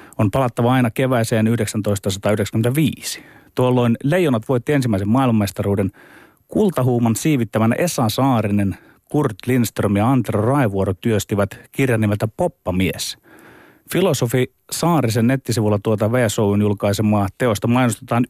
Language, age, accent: Finnish, 30-49, native